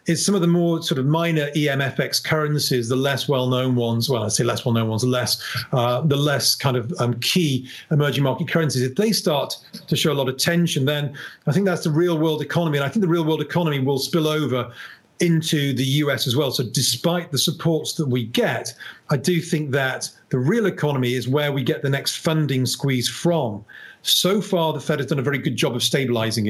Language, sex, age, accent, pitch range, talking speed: English, male, 40-59, British, 130-160 Hz, 220 wpm